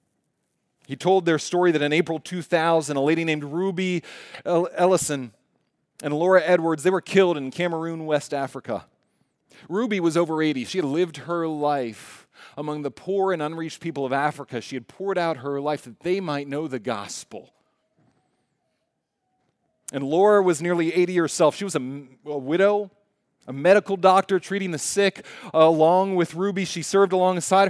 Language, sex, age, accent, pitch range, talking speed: English, male, 30-49, American, 145-195 Hz, 165 wpm